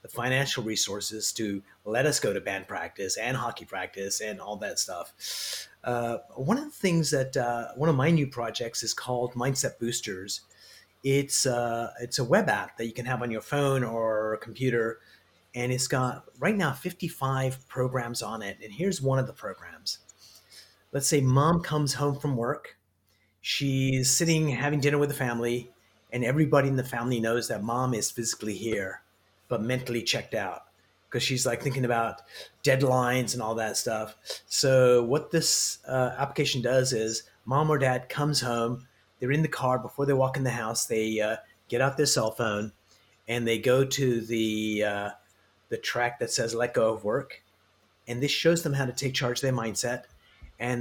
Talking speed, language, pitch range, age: 185 wpm, English, 110-135 Hz, 30-49